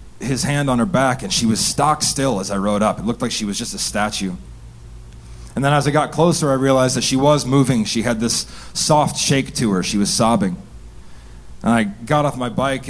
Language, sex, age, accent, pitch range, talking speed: English, male, 30-49, American, 105-140 Hz, 235 wpm